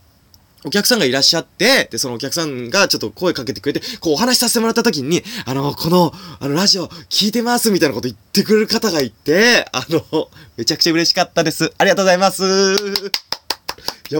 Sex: male